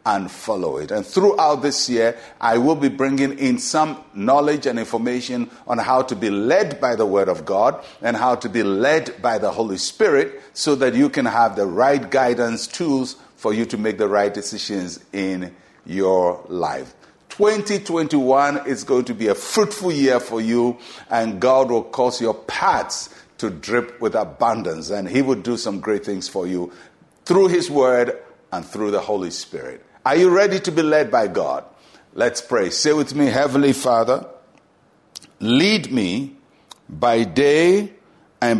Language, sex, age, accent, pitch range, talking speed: English, male, 60-79, Nigerian, 110-155 Hz, 175 wpm